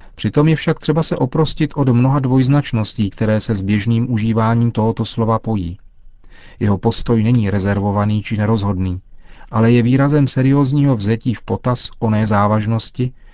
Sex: male